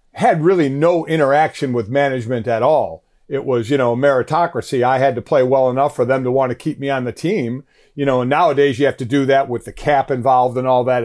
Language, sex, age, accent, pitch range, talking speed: English, male, 50-69, American, 140-180 Hz, 250 wpm